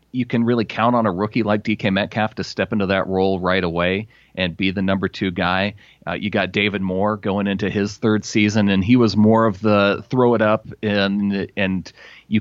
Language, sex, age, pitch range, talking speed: English, male, 30-49, 95-120 Hz, 220 wpm